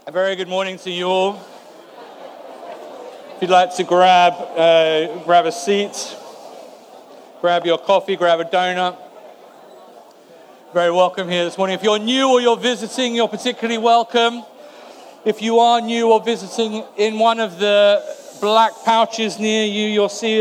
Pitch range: 175-220 Hz